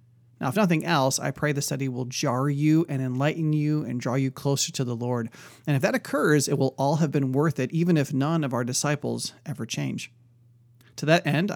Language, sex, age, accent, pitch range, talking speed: English, male, 30-49, American, 125-155 Hz, 225 wpm